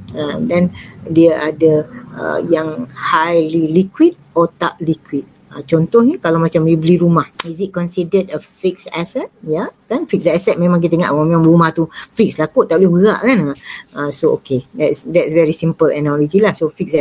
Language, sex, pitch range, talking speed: Malay, female, 160-210 Hz, 185 wpm